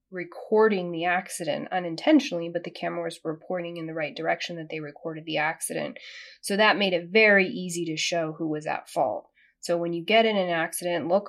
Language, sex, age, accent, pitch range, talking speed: English, female, 30-49, American, 160-200 Hz, 200 wpm